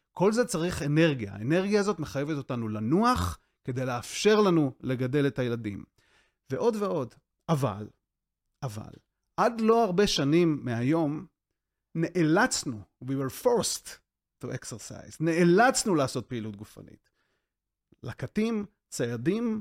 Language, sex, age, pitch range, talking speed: Hebrew, male, 30-49, 130-195 Hz, 110 wpm